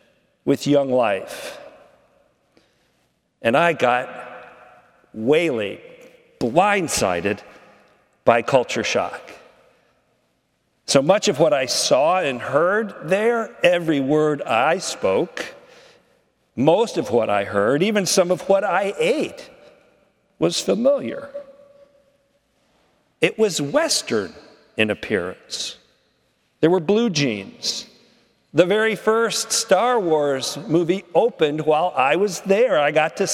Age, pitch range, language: 50-69, 160-265 Hz, English